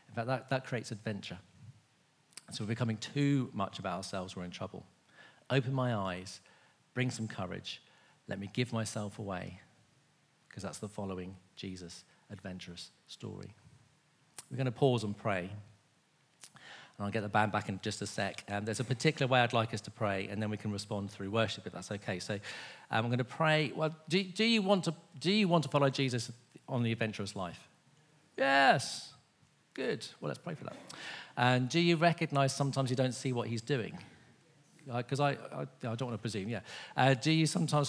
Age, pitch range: 40-59, 105-140 Hz